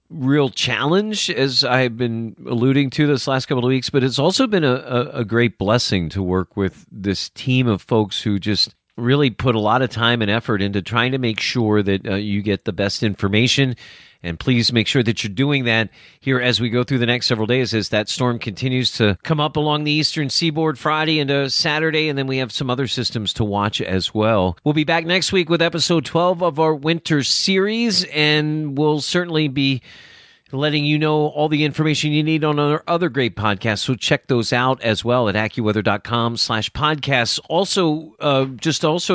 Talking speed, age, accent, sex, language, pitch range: 205 wpm, 40-59, American, male, English, 115-150 Hz